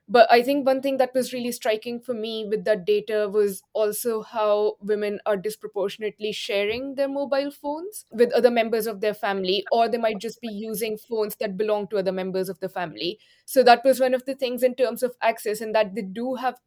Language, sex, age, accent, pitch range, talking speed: English, female, 20-39, Indian, 215-260 Hz, 220 wpm